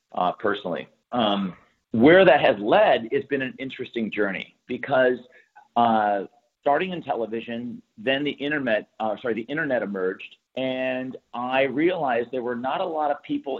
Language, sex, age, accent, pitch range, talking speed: English, male, 40-59, American, 110-140 Hz, 155 wpm